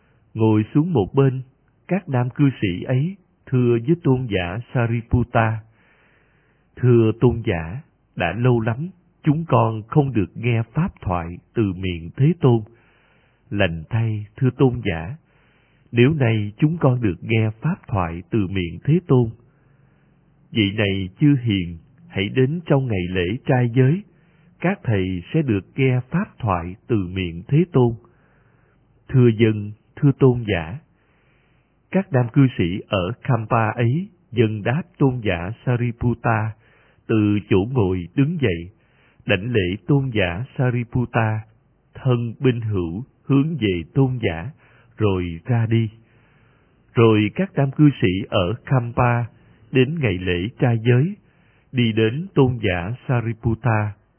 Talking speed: 135 wpm